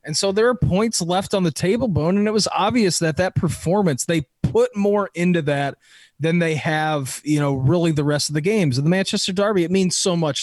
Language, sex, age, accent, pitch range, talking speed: English, male, 20-39, American, 140-165 Hz, 235 wpm